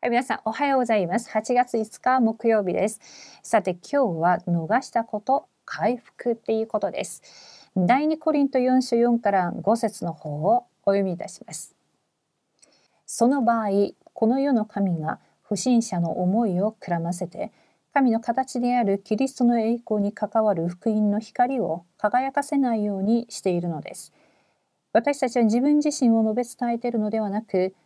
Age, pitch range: 40-59, 190-245 Hz